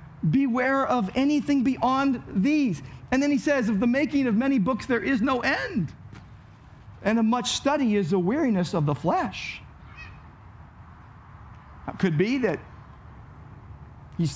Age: 50-69